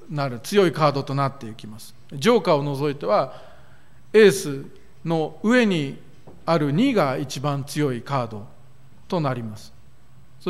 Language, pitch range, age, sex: Japanese, 130-180 Hz, 50-69, male